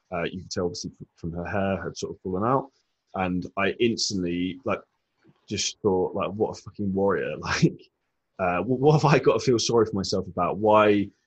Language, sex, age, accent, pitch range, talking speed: English, male, 20-39, British, 95-115 Hz, 195 wpm